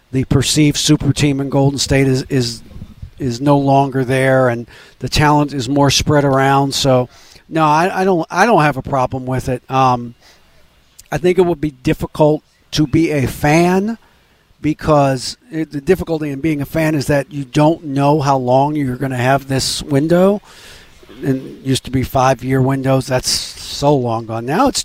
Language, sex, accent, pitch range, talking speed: English, male, American, 135-160 Hz, 190 wpm